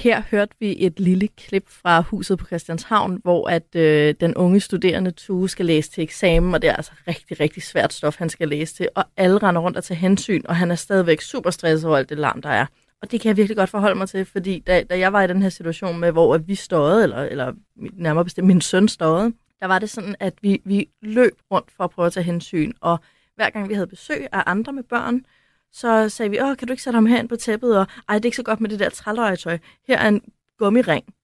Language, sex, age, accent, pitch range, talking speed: Danish, female, 30-49, native, 165-205 Hz, 255 wpm